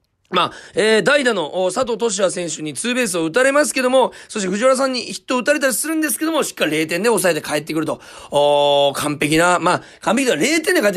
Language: Japanese